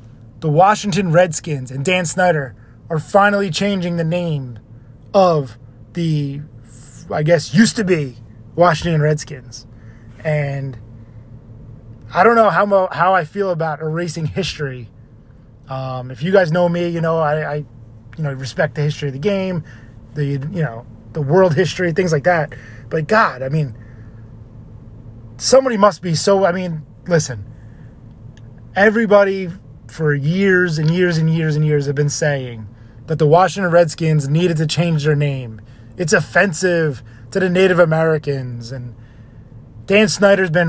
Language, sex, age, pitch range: English, male, 20-39, 120-185 Hz